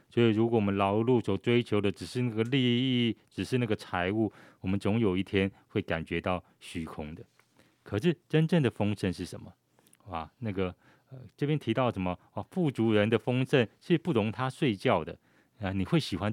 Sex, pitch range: male, 95-130 Hz